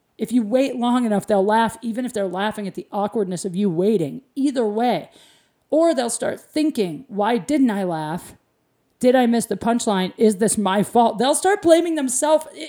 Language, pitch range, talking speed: English, 215-285 Hz, 190 wpm